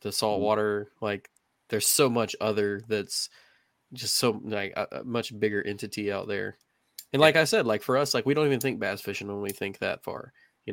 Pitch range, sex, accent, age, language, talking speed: 105-115 Hz, male, American, 20-39, English, 220 wpm